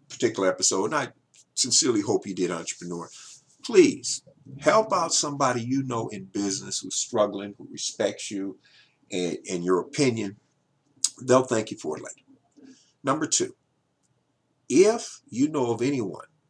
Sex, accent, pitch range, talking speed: male, American, 110-145 Hz, 140 wpm